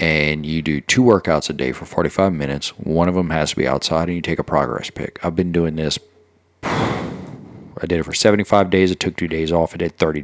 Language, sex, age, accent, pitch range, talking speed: English, male, 40-59, American, 75-90 Hz, 240 wpm